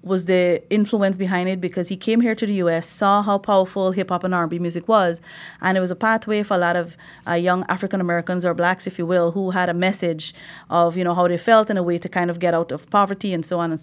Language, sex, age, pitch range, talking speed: English, female, 30-49, 175-200 Hz, 265 wpm